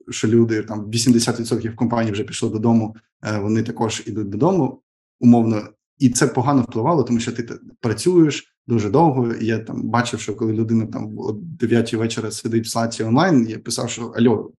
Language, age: Ukrainian, 20-39